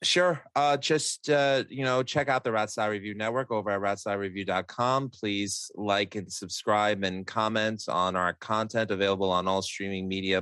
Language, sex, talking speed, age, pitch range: English, male, 175 wpm, 30-49, 95-115 Hz